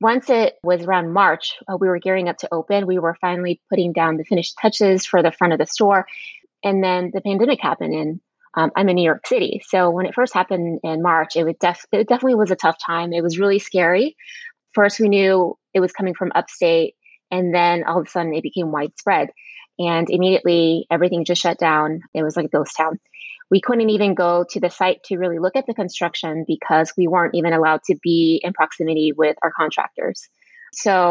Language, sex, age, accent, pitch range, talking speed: English, female, 20-39, American, 170-195 Hz, 215 wpm